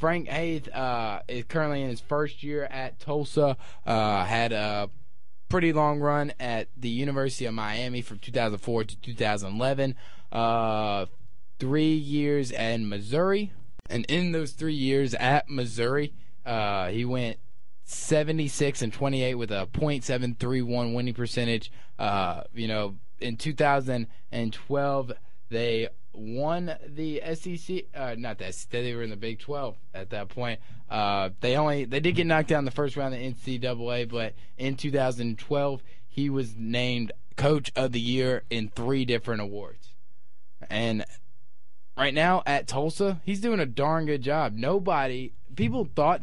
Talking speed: 145 wpm